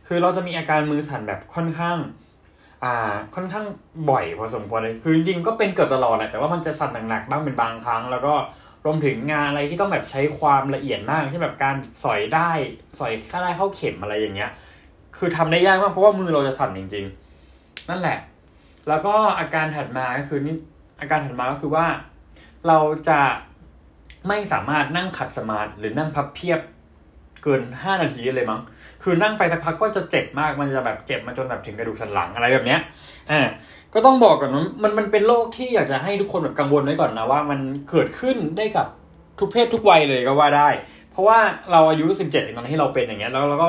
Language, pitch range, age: Thai, 130-185 Hz, 20-39